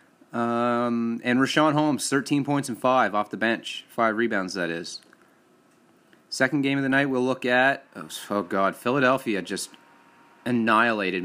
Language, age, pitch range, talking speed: English, 30-49, 120-145 Hz, 155 wpm